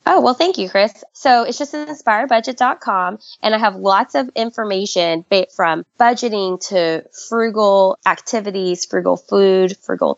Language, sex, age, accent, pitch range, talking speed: English, female, 20-39, American, 180-230 Hz, 135 wpm